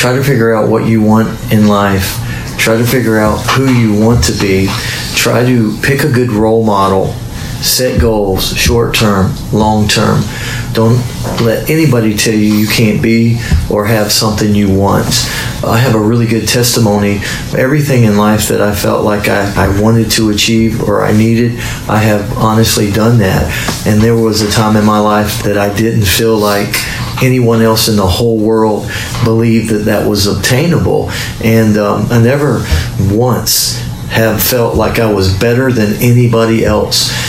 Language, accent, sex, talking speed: English, American, male, 175 wpm